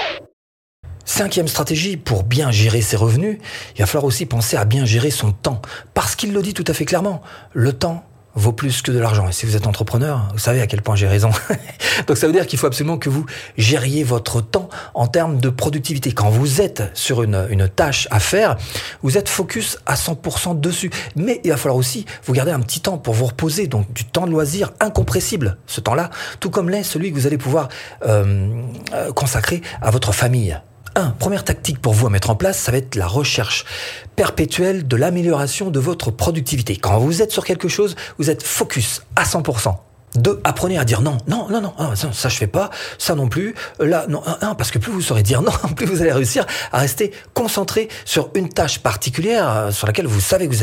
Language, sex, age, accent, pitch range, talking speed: French, male, 40-59, French, 115-165 Hz, 220 wpm